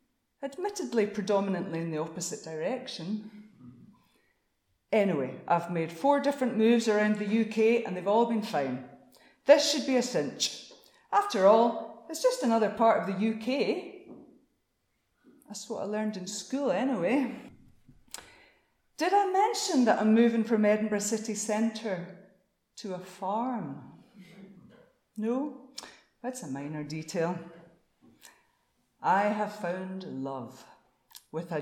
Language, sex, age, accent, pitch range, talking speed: English, female, 40-59, British, 180-235 Hz, 125 wpm